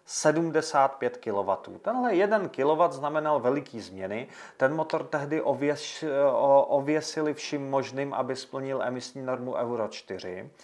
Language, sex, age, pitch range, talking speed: Czech, male, 40-59, 120-175 Hz, 120 wpm